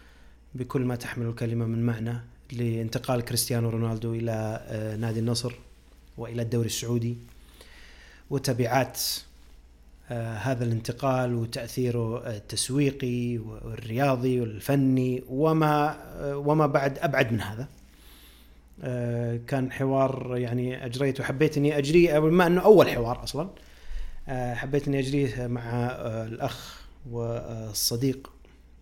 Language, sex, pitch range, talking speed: Arabic, male, 115-135 Hz, 95 wpm